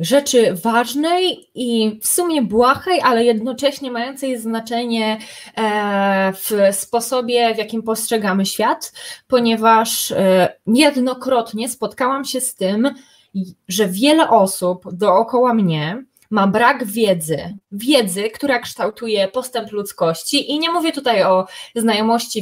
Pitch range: 205-265 Hz